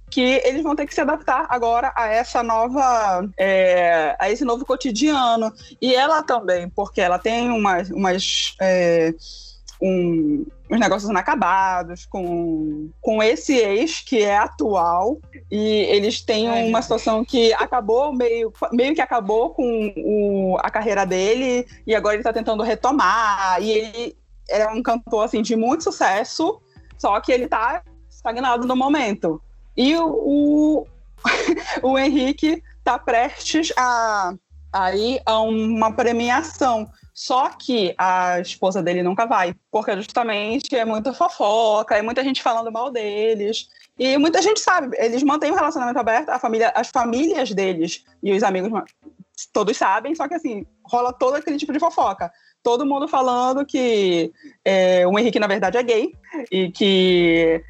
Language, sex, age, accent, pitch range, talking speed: Portuguese, female, 20-39, Brazilian, 195-260 Hz, 150 wpm